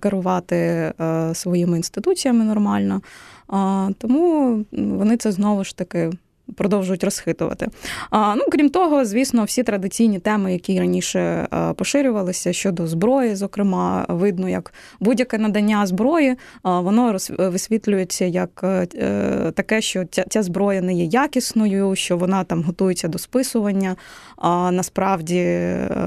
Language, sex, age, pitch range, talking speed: Ukrainian, female, 20-39, 180-225 Hz, 125 wpm